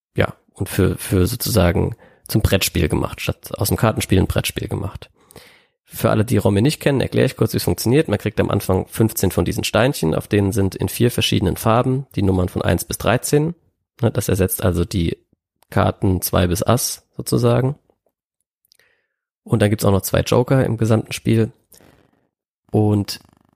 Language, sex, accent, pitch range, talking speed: German, male, German, 95-120 Hz, 175 wpm